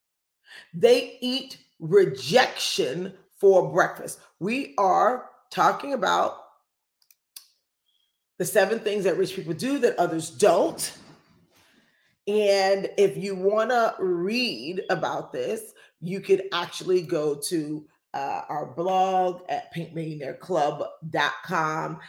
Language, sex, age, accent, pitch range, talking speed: English, female, 40-59, American, 170-225 Hz, 100 wpm